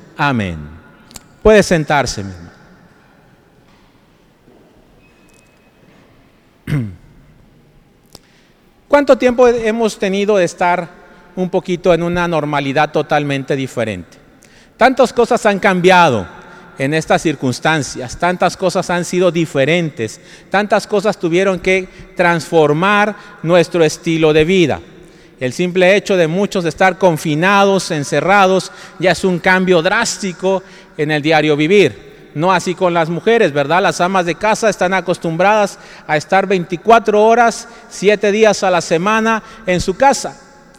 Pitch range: 165-205 Hz